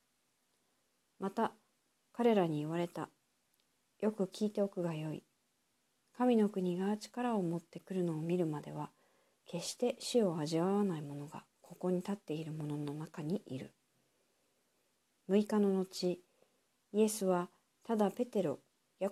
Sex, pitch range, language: female, 165-210 Hz, Japanese